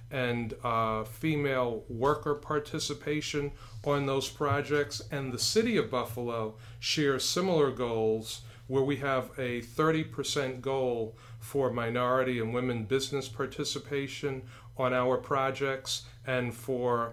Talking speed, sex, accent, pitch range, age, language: 115 wpm, male, American, 120-140 Hz, 40-59, English